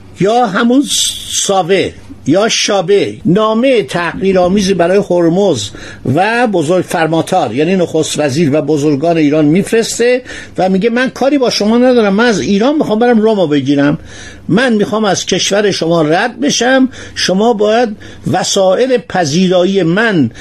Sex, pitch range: male, 155-225 Hz